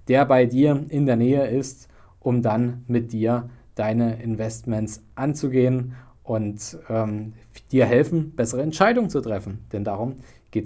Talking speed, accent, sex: 140 wpm, German, male